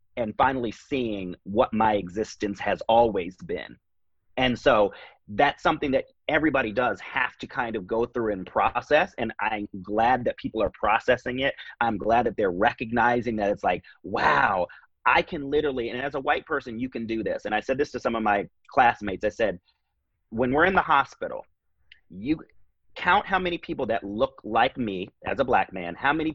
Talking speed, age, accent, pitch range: 190 wpm, 30-49, American, 105-150 Hz